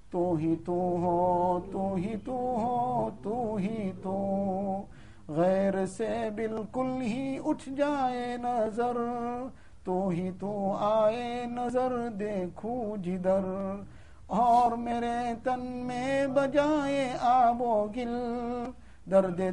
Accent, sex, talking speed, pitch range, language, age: Indian, male, 100 wpm, 210-255 Hz, English, 50-69